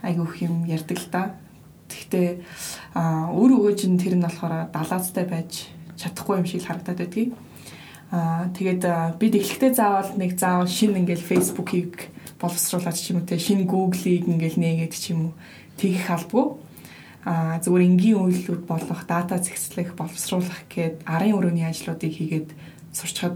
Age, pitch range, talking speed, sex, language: 20-39, 165-190 Hz, 105 wpm, female, English